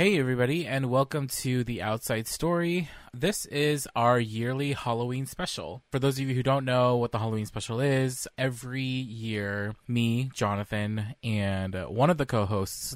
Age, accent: 20-39, American